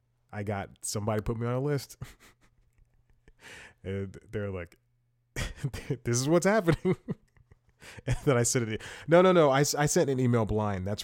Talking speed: 160 wpm